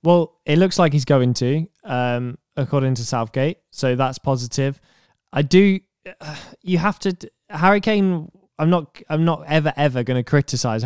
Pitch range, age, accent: 125-160 Hz, 10-29, British